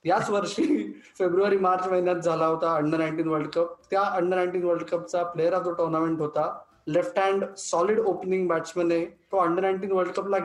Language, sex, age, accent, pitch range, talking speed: Marathi, male, 20-39, native, 175-200 Hz, 185 wpm